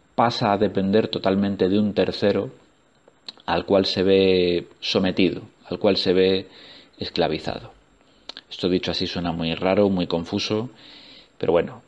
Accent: Spanish